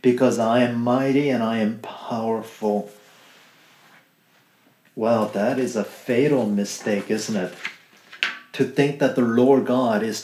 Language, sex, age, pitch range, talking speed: English, male, 50-69, 125-155 Hz, 135 wpm